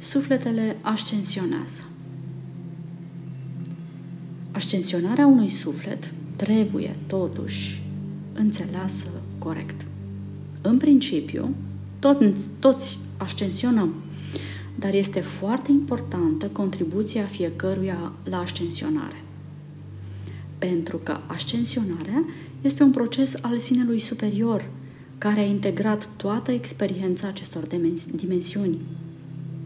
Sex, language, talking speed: female, Romanian, 75 wpm